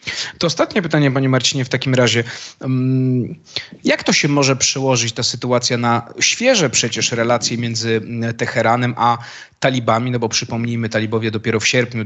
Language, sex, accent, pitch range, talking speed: Polish, male, native, 110-140 Hz, 150 wpm